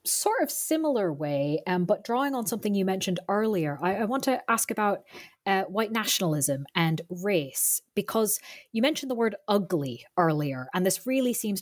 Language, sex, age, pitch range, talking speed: English, female, 20-39, 175-220 Hz, 175 wpm